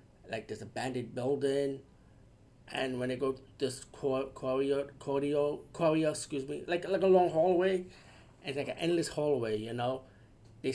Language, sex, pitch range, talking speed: English, male, 125-145 Hz, 165 wpm